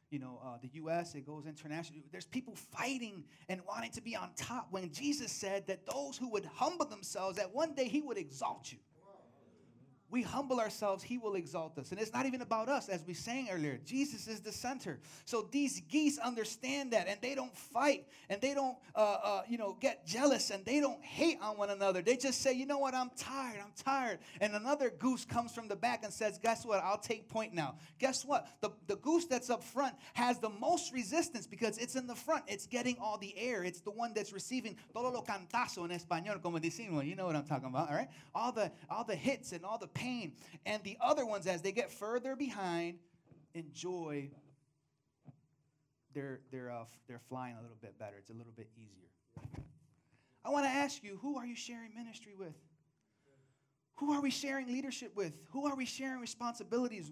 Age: 30-49